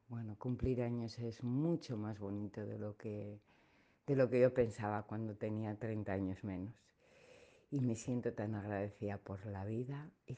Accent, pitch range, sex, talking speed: Spanish, 110-140 Hz, female, 170 wpm